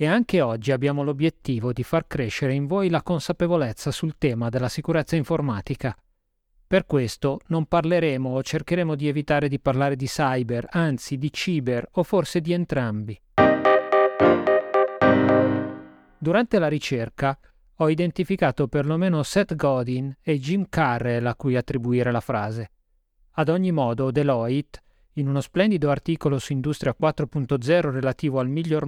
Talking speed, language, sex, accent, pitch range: 135 wpm, Italian, male, native, 125-160 Hz